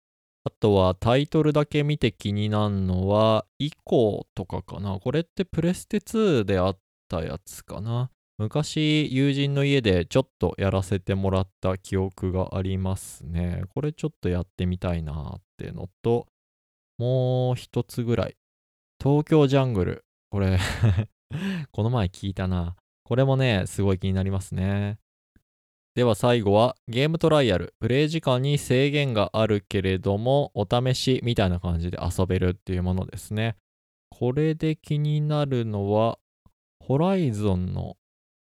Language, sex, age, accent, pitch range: Japanese, male, 20-39, native, 95-140 Hz